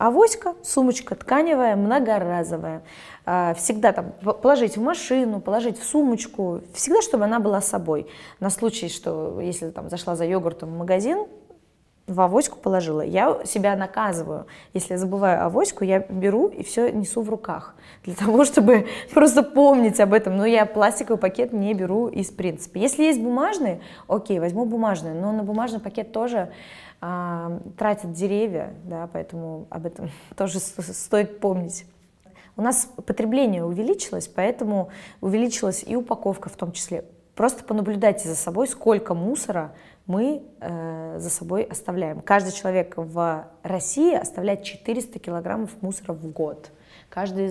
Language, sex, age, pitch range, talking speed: English, female, 20-39, 175-230 Hz, 140 wpm